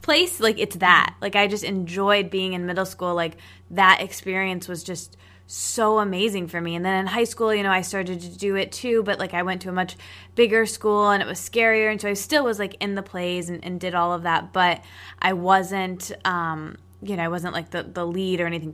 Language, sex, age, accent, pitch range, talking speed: English, female, 20-39, American, 165-195 Hz, 245 wpm